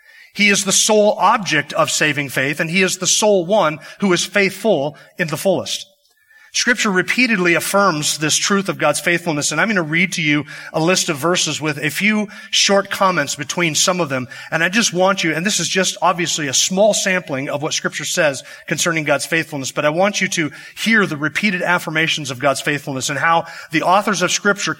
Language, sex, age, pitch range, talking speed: English, male, 30-49, 155-205 Hz, 210 wpm